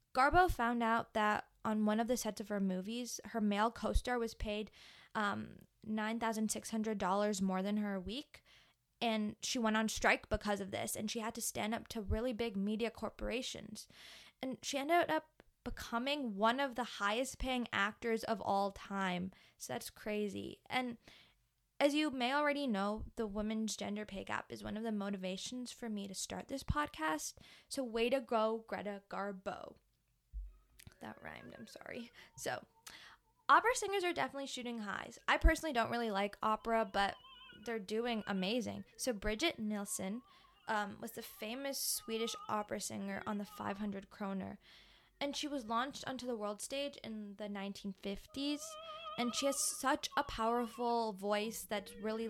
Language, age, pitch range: English, 20-39, 205-250 Hz